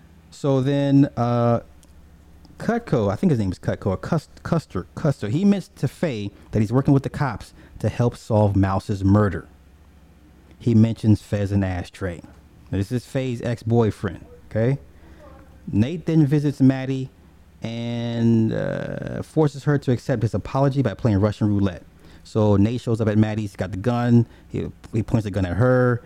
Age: 30-49